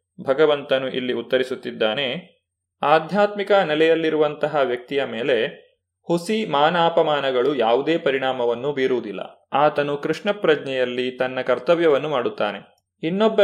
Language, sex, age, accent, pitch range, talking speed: Kannada, male, 30-49, native, 135-170 Hz, 85 wpm